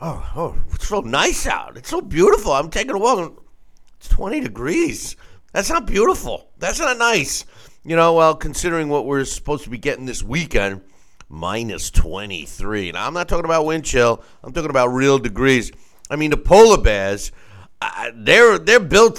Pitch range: 115-170 Hz